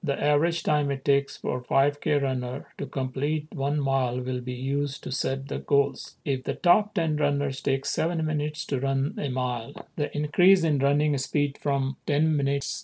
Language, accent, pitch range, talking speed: English, Indian, 130-150 Hz, 180 wpm